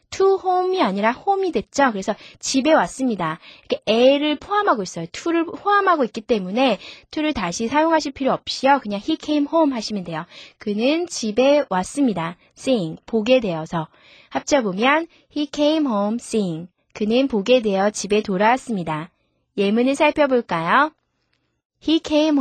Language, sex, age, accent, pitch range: Korean, female, 20-39, native, 205-300 Hz